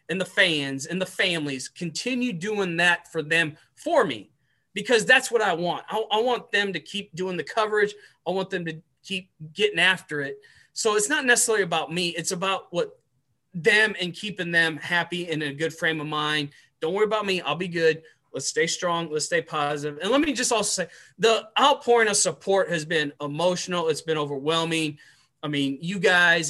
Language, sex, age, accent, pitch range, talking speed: English, male, 20-39, American, 150-190 Hz, 200 wpm